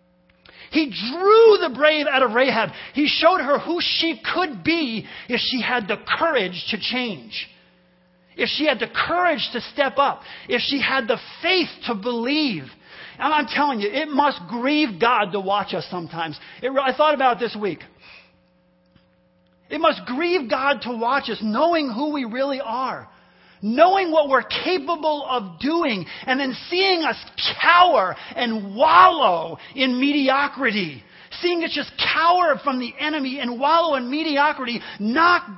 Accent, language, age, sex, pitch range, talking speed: American, English, 40-59, male, 235-320 Hz, 155 wpm